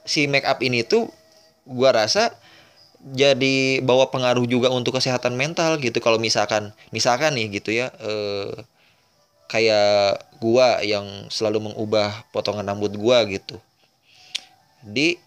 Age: 20-39